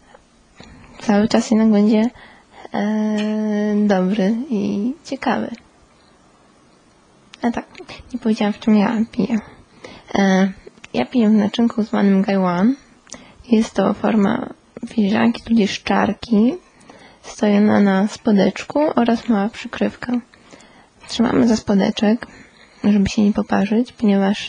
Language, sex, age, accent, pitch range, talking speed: Polish, female, 20-39, native, 205-235 Hz, 100 wpm